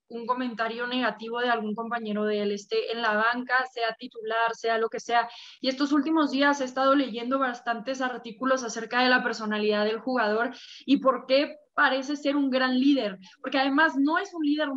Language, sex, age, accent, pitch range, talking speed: English, female, 20-39, Mexican, 225-265 Hz, 190 wpm